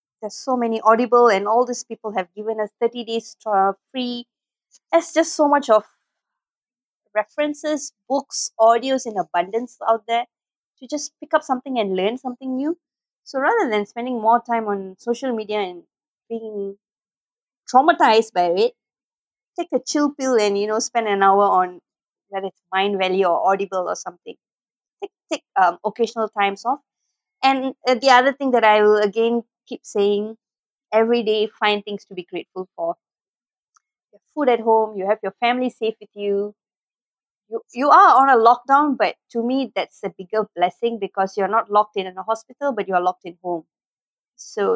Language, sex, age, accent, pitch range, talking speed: English, female, 20-39, Indian, 200-260 Hz, 175 wpm